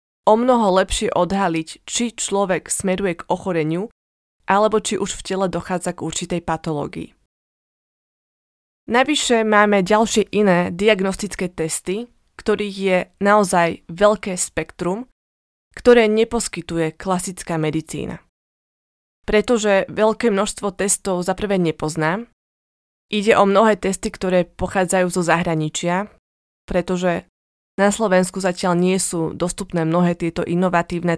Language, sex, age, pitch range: Slovak, female, 20-39, 175-205 Hz